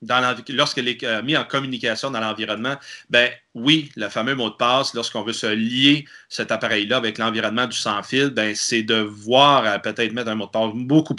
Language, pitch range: French, 110-145 Hz